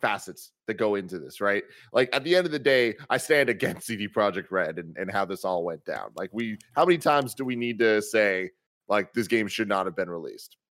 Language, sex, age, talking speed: English, male, 30-49, 245 wpm